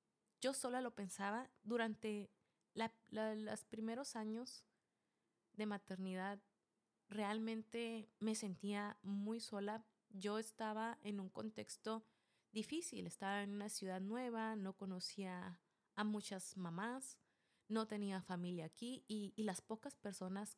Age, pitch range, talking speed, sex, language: 30-49, 195-230 Hz, 120 wpm, female, Spanish